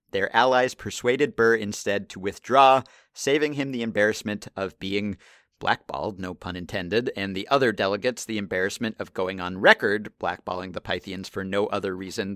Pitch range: 100-125 Hz